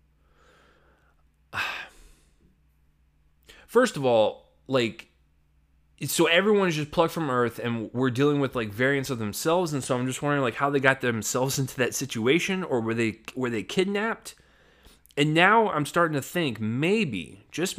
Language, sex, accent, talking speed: English, male, American, 155 wpm